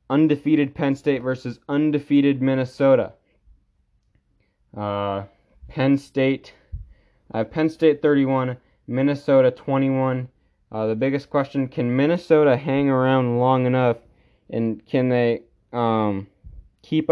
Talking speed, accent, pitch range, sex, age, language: 110 wpm, American, 110-135 Hz, male, 20-39, English